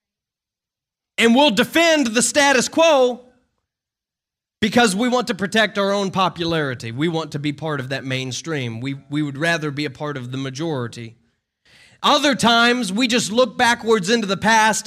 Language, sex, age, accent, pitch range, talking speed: English, male, 30-49, American, 165-230 Hz, 165 wpm